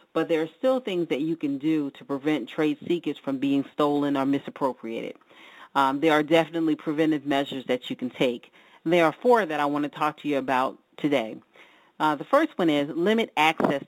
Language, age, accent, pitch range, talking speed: English, 40-59, American, 140-170 Hz, 205 wpm